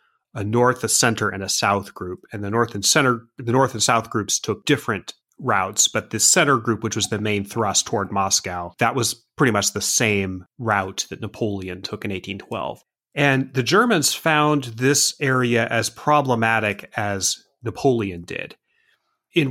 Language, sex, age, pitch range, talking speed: English, male, 30-49, 100-130 Hz, 170 wpm